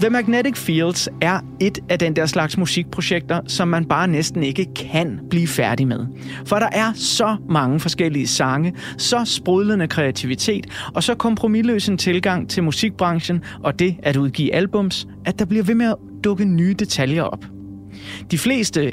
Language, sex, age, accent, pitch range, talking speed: Danish, male, 30-49, native, 135-190 Hz, 170 wpm